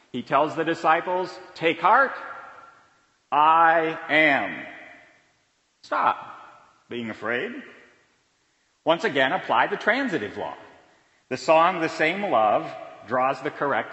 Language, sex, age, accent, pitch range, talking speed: English, male, 50-69, American, 155-210 Hz, 110 wpm